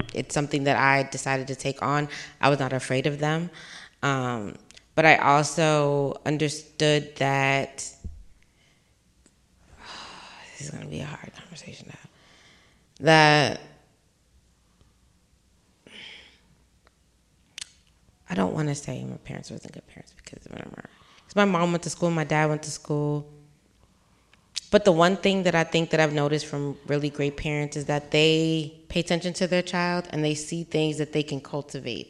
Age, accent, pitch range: 20-39, American, 140-155 Hz